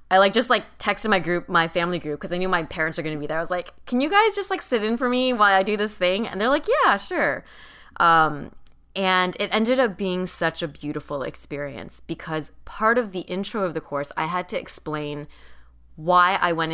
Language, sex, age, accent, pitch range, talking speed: English, female, 20-39, American, 150-195 Hz, 240 wpm